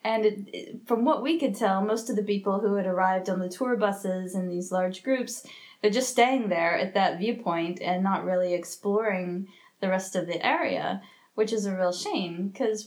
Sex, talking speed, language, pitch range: female, 200 wpm, English, 180-210 Hz